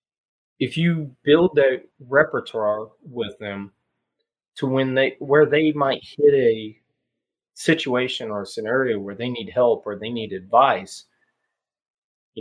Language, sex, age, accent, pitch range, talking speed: English, male, 30-49, American, 110-150 Hz, 135 wpm